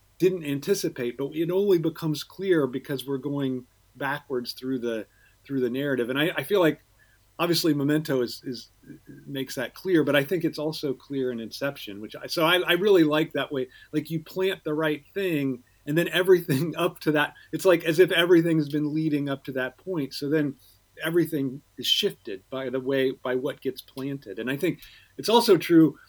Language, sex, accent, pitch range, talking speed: English, male, American, 135-180 Hz, 200 wpm